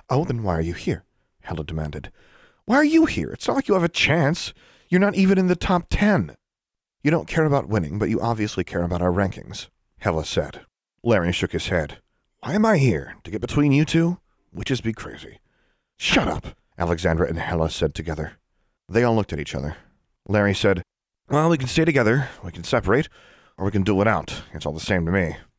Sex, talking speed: male, 215 wpm